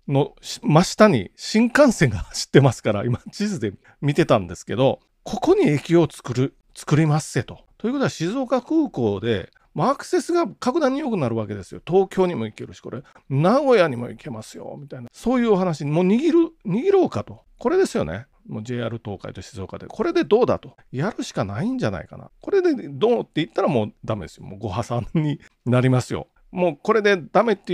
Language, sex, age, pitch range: Japanese, male, 40-59, 125-200 Hz